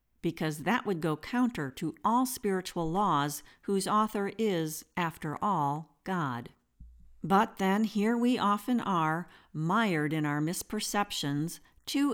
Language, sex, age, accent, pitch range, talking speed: English, female, 50-69, American, 155-215 Hz, 130 wpm